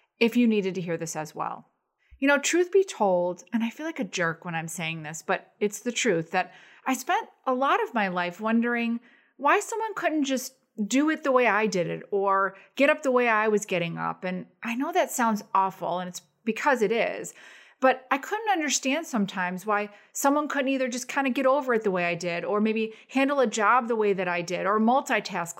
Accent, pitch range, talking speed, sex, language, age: American, 195-285 Hz, 230 wpm, female, English, 30-49